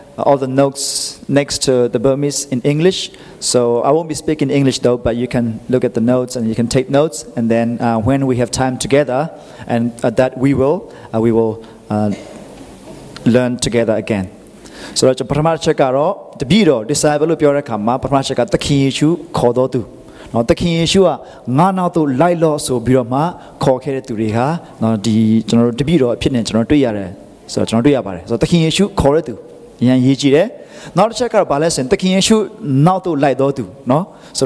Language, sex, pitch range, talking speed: English, male, 125-160 Hz, 190 wpm